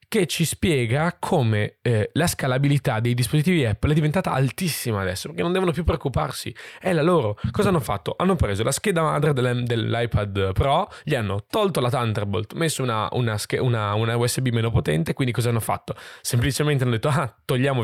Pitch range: 110-150 Hz